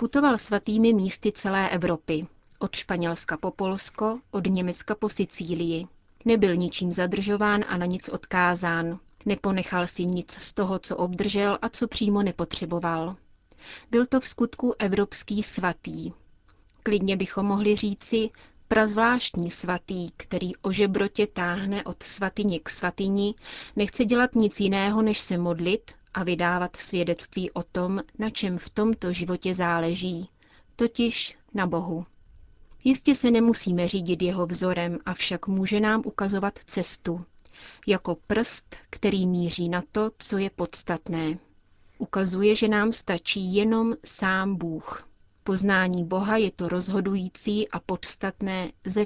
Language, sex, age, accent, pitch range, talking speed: Czech, female, 30-49, native, 175-210 Hz, 130 wpm